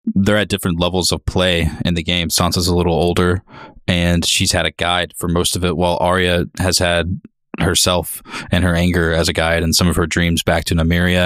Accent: American